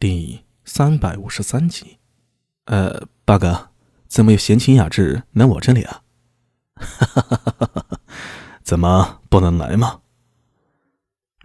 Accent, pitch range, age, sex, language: native, 95-120 Hz, 20-39, male, Chinese